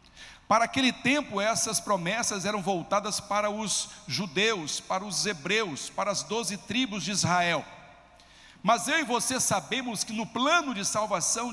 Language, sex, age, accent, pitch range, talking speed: Portuguese, male, 60-79, Brazilian, 190-255 Hz, 150 wpm